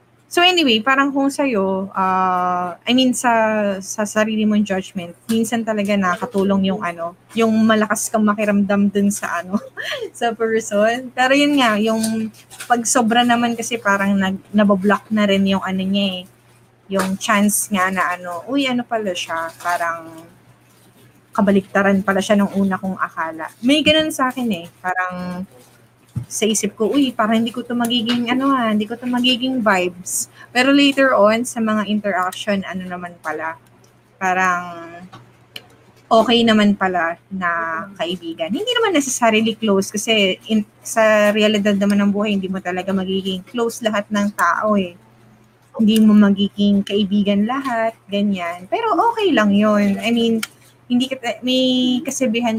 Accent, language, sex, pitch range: Filipino, English, female, 185-230 Hz